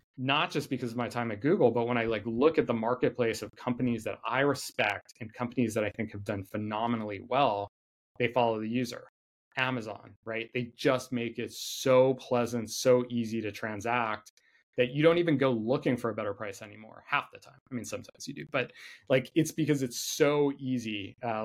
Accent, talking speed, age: American, 205 wpm, 20-39